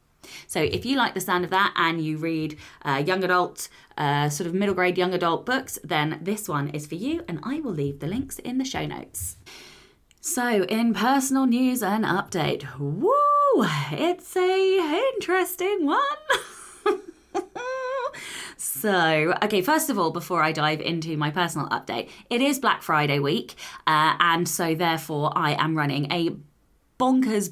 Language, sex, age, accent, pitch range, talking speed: English, female, 20-39, British, 155-225 Hz, 165 wpm